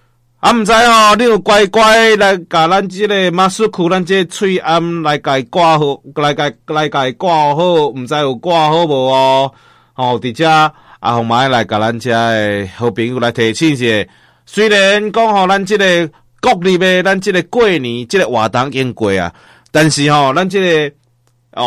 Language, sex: Chinese, male